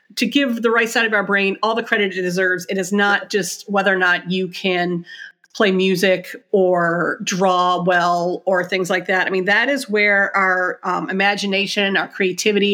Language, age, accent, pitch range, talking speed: English, 40-59, American, 185-220 Hz, 195 wpm